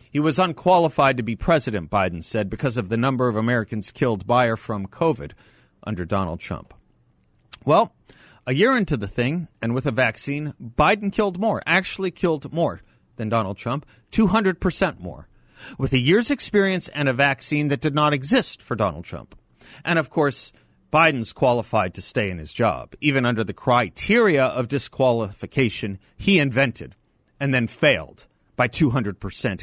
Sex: male